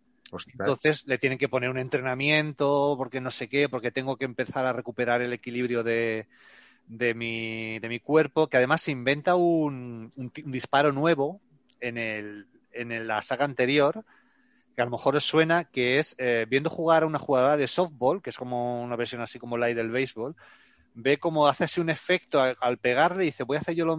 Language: Spanish